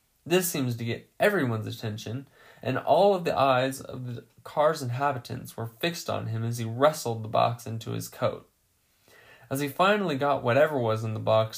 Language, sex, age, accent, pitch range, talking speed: English, male, 20-39, American, 115-150 Hz, 185 wpm